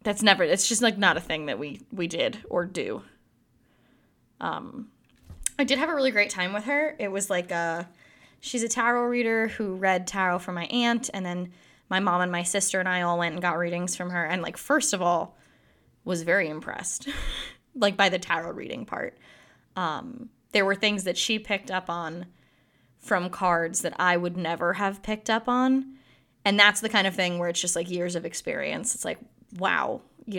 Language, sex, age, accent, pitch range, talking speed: English, female, 10-29, American, 180-225 Hz, 205 wpm